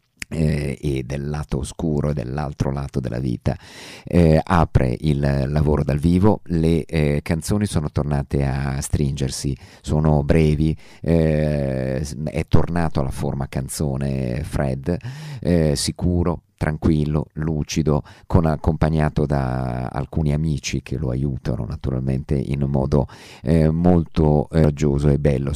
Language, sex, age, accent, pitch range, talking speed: Italian, male, 50-69, native, 70-80 Hz, 115 wpm